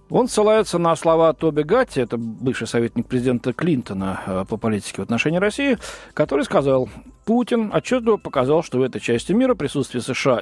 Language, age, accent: Russian, 40-59, native